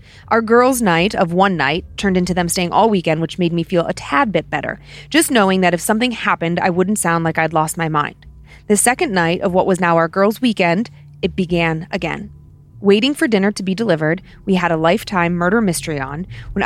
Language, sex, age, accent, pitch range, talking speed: English, female, 30-49, American, 165-205 Hz, 220 wpm